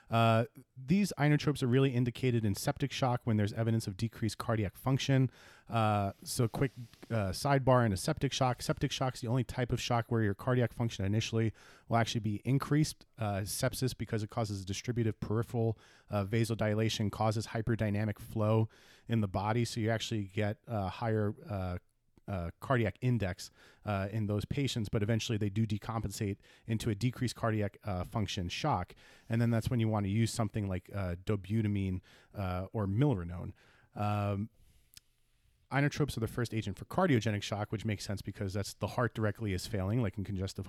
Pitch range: 105-120 Hz